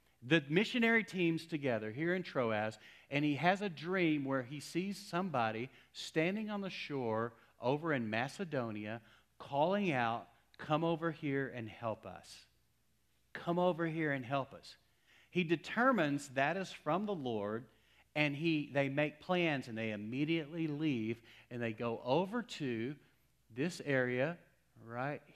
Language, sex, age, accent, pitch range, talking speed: English, male, 40-59, American, 120-170 Hz, 145 wpm